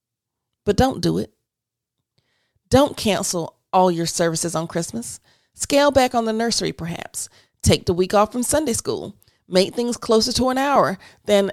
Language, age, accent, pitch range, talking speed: English, 30-49, American, 175-245 Hz, 160 wpm